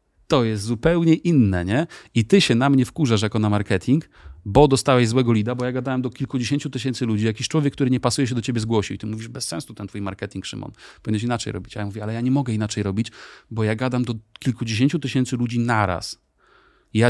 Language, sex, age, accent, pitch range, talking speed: Polish, male, 30-49, native, 105-130 Hz, 220 wpm